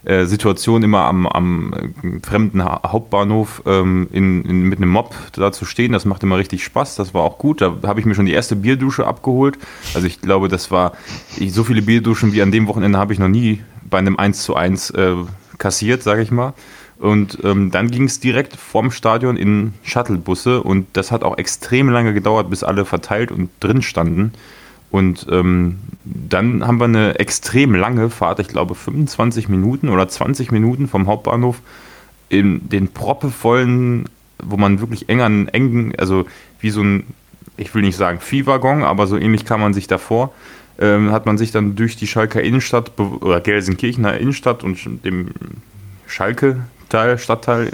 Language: German